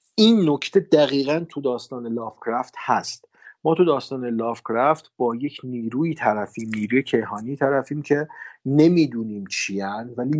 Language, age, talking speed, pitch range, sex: Persian, 40-59, 125 wpm, 115-145 Hz, male